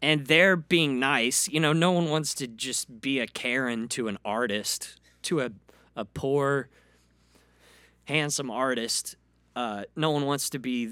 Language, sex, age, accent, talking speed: English, male, 30-49, American, 160 wpm